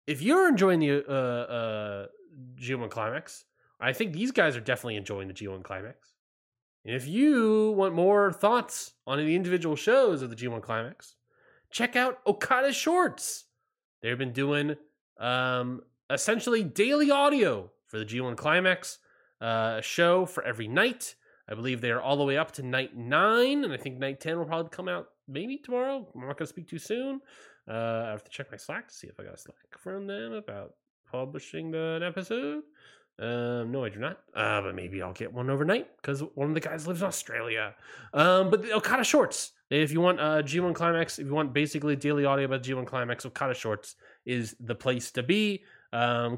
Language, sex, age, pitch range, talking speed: English, male, 20-39, 120-185 Hz, 190 wpm